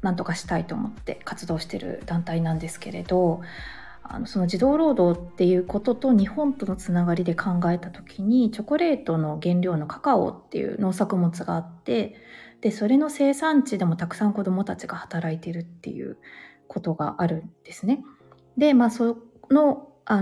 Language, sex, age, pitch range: Japanese, female, 20-39, 170-230 Hz